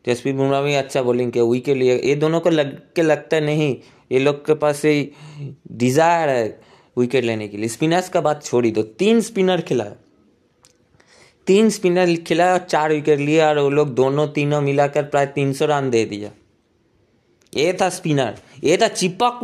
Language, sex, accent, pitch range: Hindi, male, native, 145-205 Hz